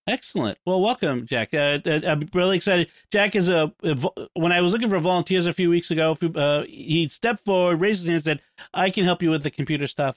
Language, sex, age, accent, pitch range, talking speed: English, male, 40-59, American, 135-180 Hz, 235 wpm